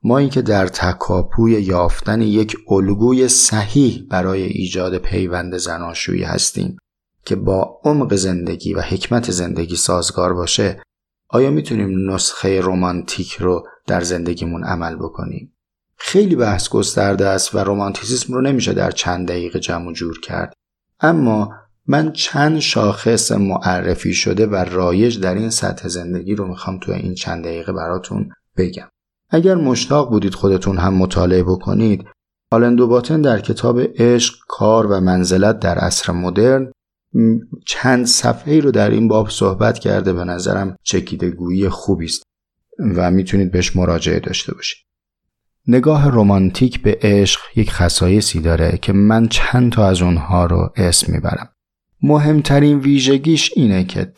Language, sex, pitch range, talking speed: Persian, male, 90-120 Hz, 135 wpm